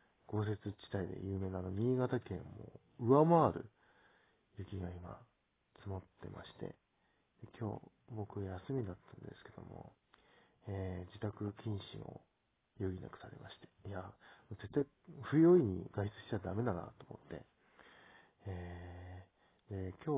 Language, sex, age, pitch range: Japanese, male, 40-59, 95-120 Hz